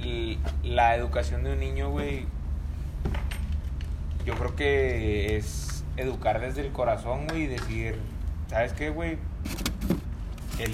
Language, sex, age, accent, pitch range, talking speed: Spanish, male, 20-39, Mexican, 75-120 Hz, 115 wpm